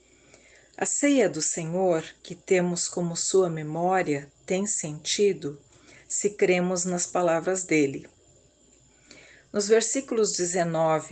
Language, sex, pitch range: Portuguese, female, 160-205 Hz